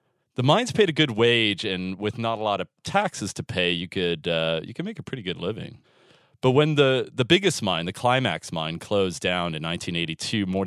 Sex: male